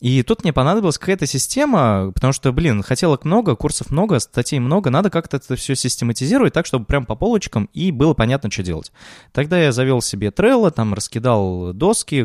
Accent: native